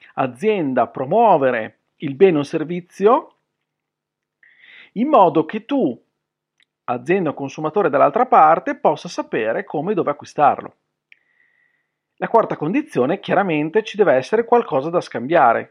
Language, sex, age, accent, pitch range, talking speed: Italian, male, 40-59, native, 155-250 Hz, 120 wpm